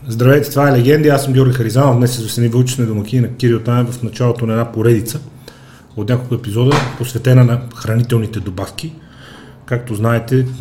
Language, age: Bulgarian, 30-49